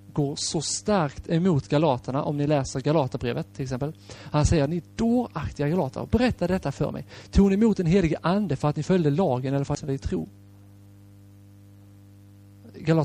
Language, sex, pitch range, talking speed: Swedish, male, 100-150 Hz, 180 wpm